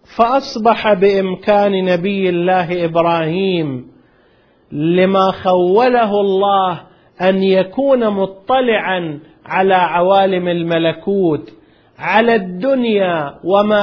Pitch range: 180-215 Hz